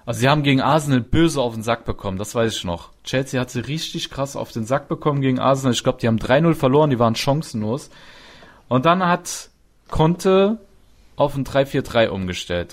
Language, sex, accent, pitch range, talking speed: German, male, German, 120-160 Hz, 200 wpm